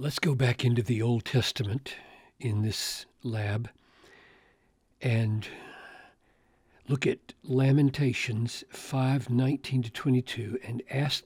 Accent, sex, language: American, male, English